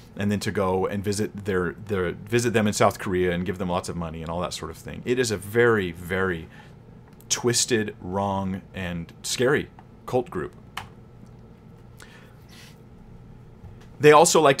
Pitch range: 105-140 Hz